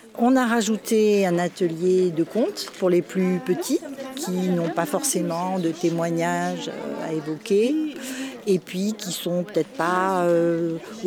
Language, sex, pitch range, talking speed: French, female, 170-210 Hz, 145 wpm